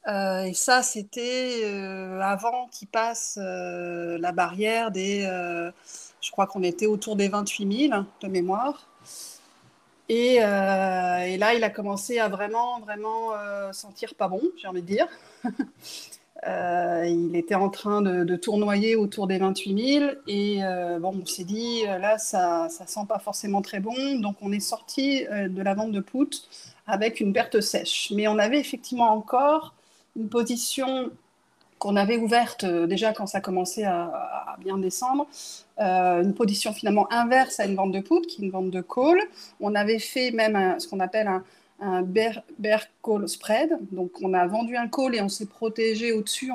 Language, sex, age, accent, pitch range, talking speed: French, female, 30-49, French, 190-235 Hz, 185 wpm